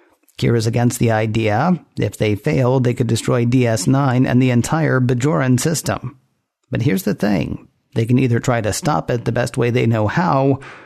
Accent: American